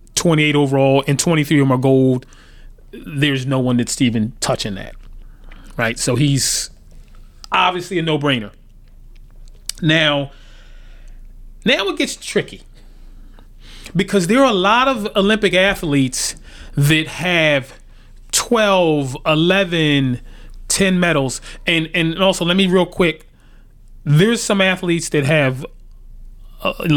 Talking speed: 120 wpm